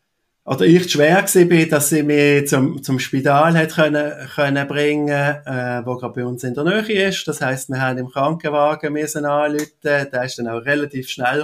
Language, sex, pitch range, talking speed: German, male, 125-150 Hz, 200 wpm